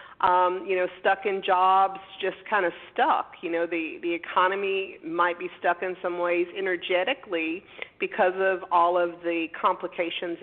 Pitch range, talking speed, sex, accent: 180-235 Hz, 160 wpm, female, American